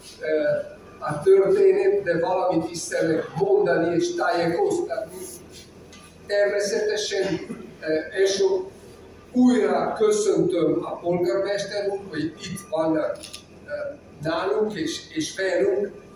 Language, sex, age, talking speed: Hungarian, male, 50-69, 80 wpm